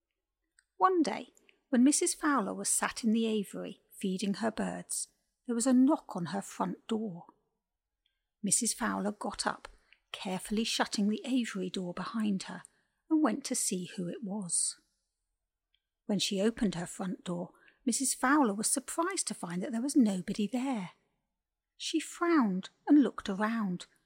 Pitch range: 190-260 Hz